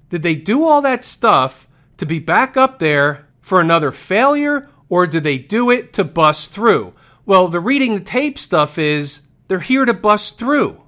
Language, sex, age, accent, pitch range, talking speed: English, male, 40-59, American, 150-220 Hz, 190 wpm